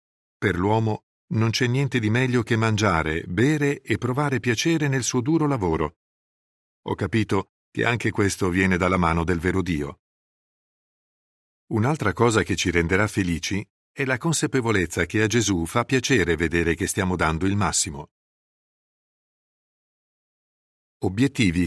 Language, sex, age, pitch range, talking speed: Italian, male, 50-69, 90-125 Hz, 135 wpm